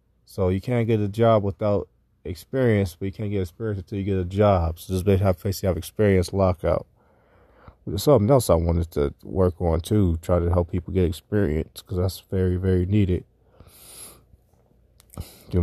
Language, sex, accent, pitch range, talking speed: English, male, American, 90-105 Hz, 190 wpm